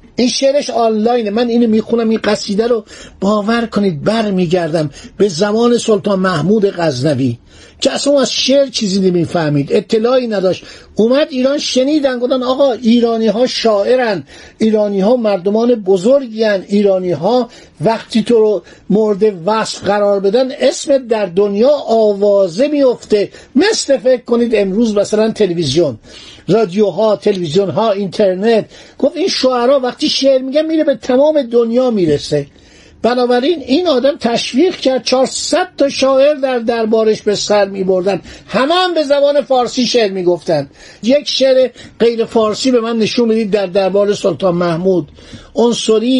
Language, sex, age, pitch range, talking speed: Persian, male, 50-69, 195-255 Hz, 140 wpm